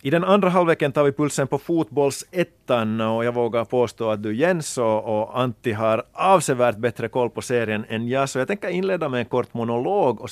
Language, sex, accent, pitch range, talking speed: Swedish, male, Finnish, 110-140 Hz, 205 wpm